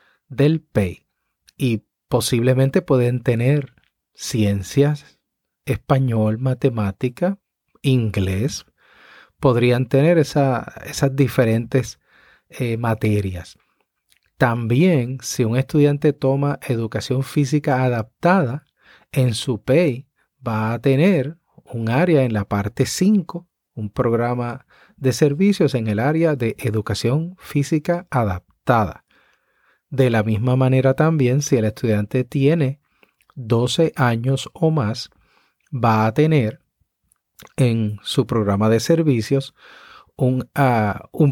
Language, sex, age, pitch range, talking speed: Spanish, male, 40-59, 115-145 Hz, 105 wpm